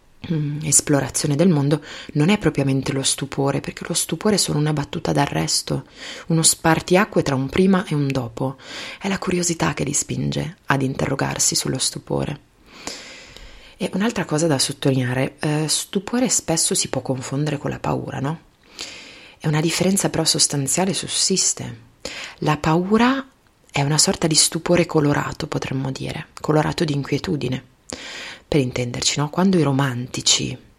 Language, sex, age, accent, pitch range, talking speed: Italian, female, 30-49, native, 140-175 Hz, 140 wpm